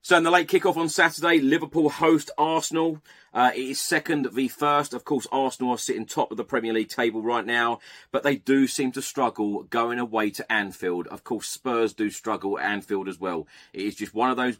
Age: 30-49